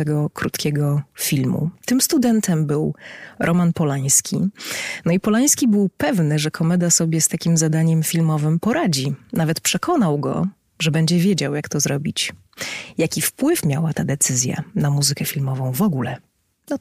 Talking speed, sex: 145 wpm, female